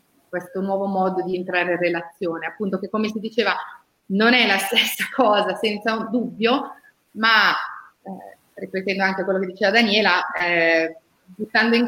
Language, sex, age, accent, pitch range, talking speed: Italian, female, 30-49, native, 175-220 Hz, 150 wpm